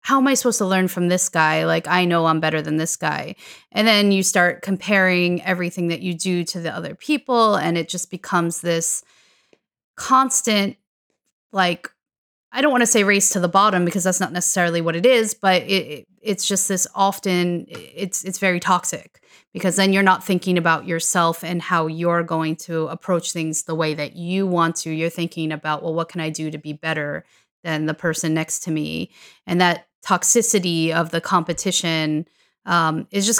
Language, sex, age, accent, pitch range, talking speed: English, female, 30-49, American, 160-195 Hz, 200 wpm